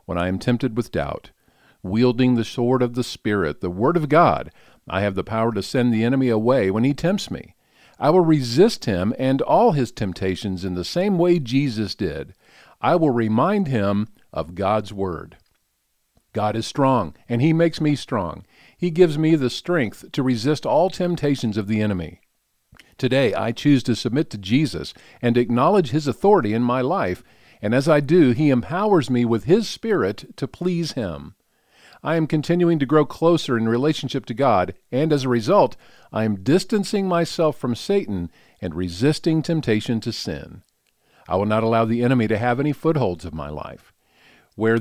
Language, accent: English, American